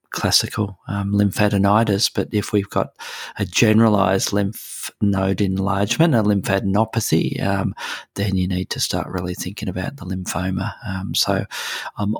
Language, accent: English, Australian